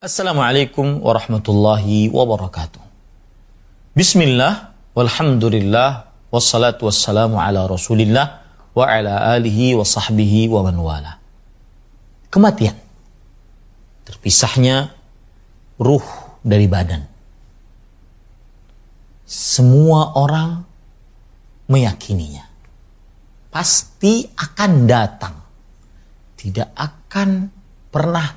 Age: 40-59